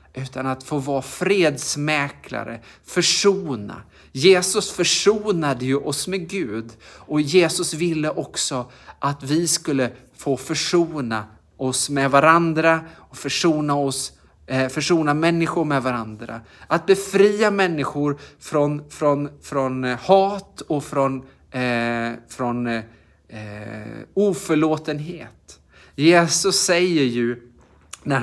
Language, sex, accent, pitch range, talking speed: Swedish, male, Norwegian, 125-175 Hz, 100 wpm